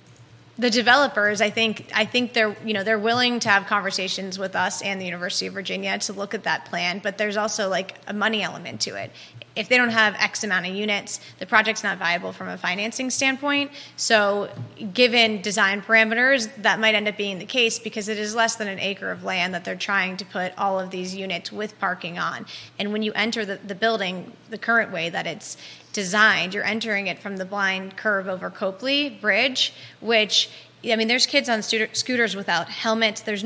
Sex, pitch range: female, 195-220 Hz